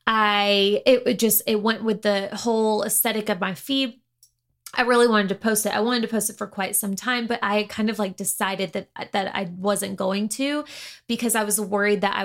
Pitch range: 195-250 Hz